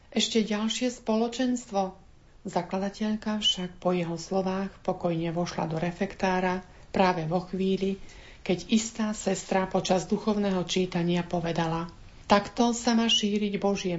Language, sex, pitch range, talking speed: Slovak, female, 180-215 Hz, 120 wpm